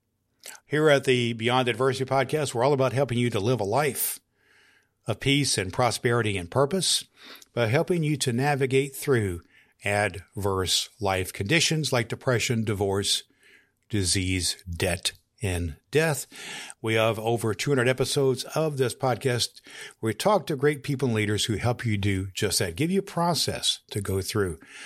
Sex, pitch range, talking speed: male, 105-135 Hz, 160 wpm